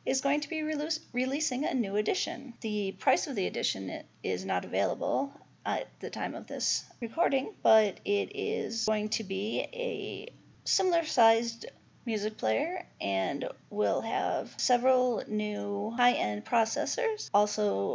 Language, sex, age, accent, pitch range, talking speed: English, female, 40-59, American, 205-260 Hz, 135 wpm